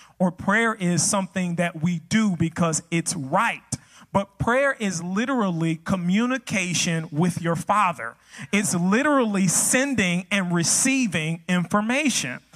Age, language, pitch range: 40-59, English, 180-235 Hz